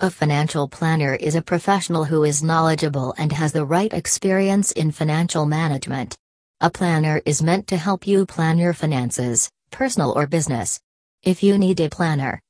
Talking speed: 170 wpm